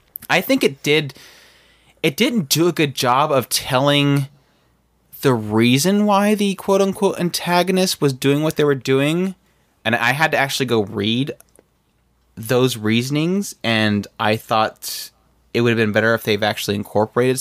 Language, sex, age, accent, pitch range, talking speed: English, male, 20-39, American, 110-145 Hz, 155 wpm